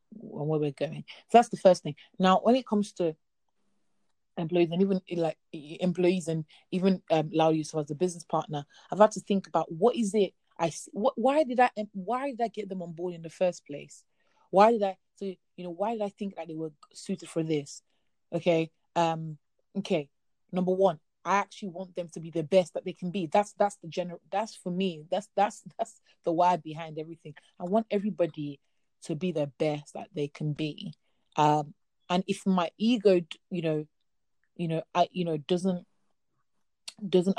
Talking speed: 190 wpm